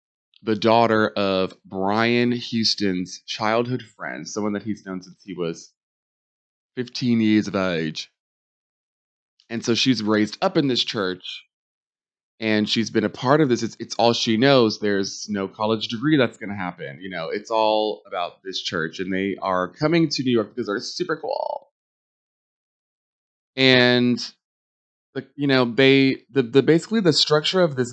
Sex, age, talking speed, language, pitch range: male, 20-39, 160 wpm, English, 95-125 Hz